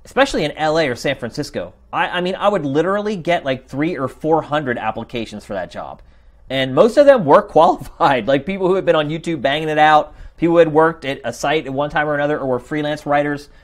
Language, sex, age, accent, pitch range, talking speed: English, male, 30-49, American, 135-195 Hz, 240 wpm